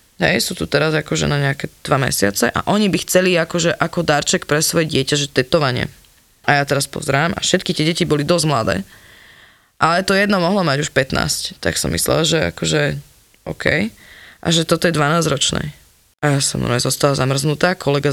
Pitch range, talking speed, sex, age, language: 145-195 Hz, 190 wpm, female, 20-39, Slovak